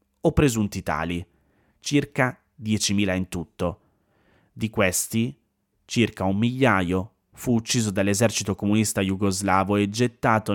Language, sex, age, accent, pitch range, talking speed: Italian, male, 30-49, native, 95-115 Hz, 110 wpm